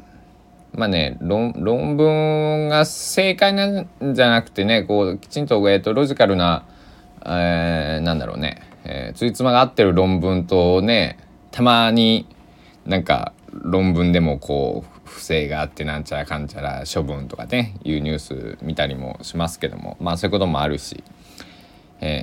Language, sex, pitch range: Japanese, male, 80-120 Hz